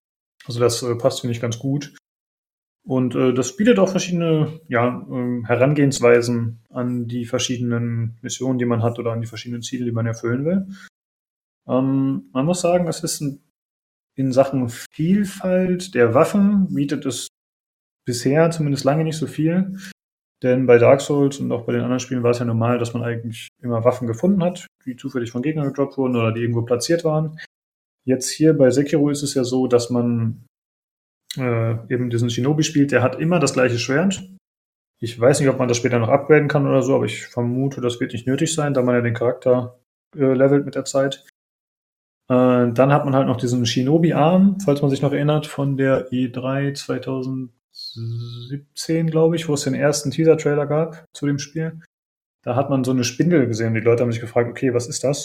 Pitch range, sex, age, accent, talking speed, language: 120-150 Hz, male, 30-49, German, 195 wpm, German